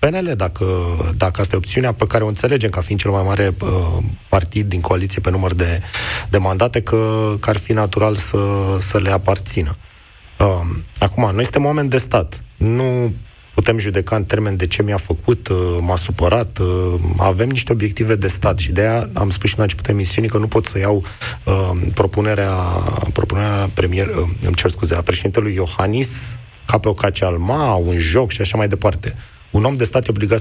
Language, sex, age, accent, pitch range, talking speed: Romanian, male, 30-49, native, 95-110 Hz, 195 wpm